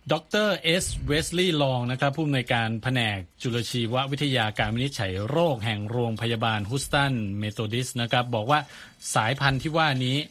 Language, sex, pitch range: Thai, male, 110-135 Hz